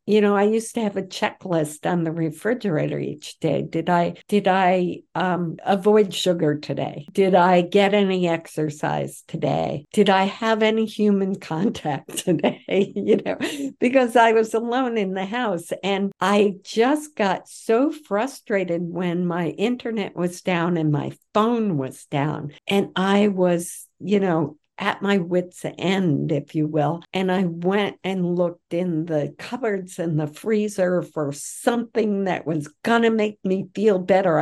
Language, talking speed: English, 160 wpm